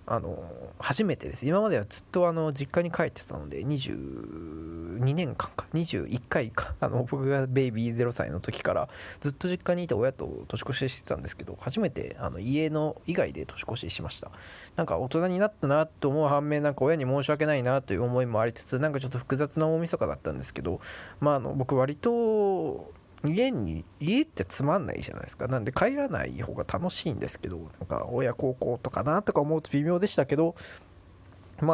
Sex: male